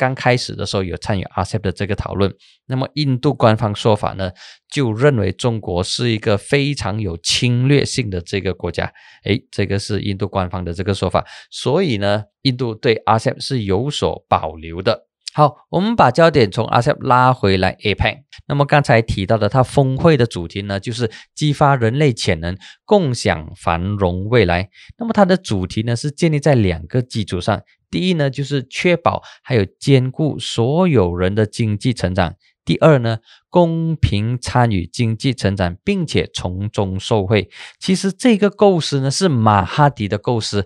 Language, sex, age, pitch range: Chinese, male, 20-39, 100-140 Hz